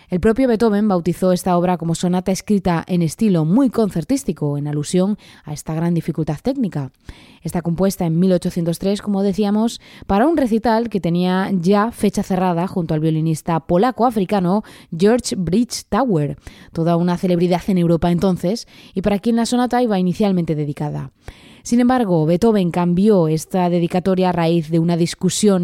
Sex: female